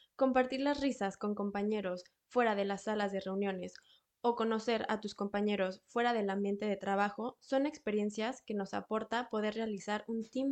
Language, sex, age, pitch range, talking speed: Spanish, female, 20-39, 200-245 Hz, 170 wpm